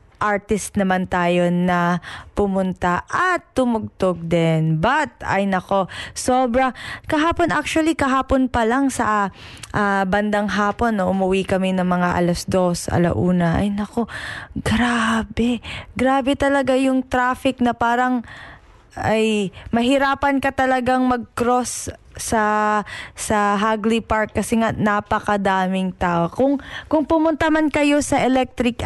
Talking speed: 120 wpm